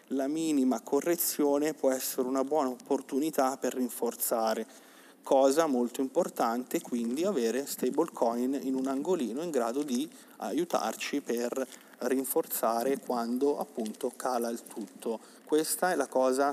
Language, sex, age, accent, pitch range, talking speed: Italian, male, 30-49, native, 125-155 Hz, 125 wpm